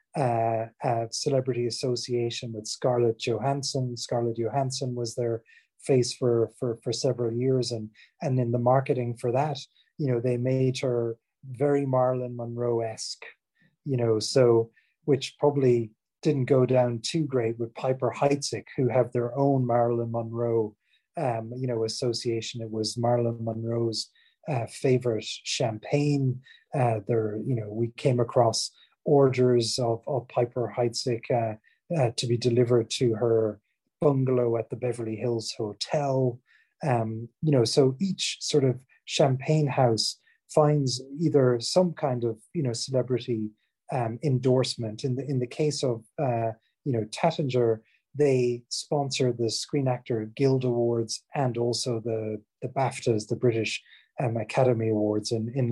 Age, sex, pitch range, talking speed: 30-49, male, 115-135 Hz, 145 wpm